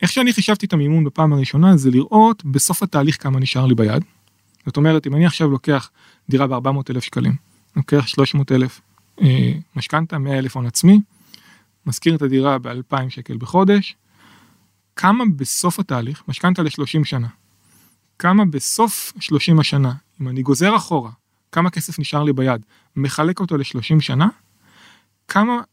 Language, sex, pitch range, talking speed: Hebrew, male, 130-170 Hz, 140 wpm